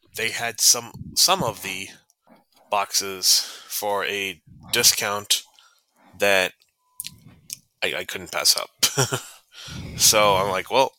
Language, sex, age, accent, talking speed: English, male, 20-39, American, 110 wpm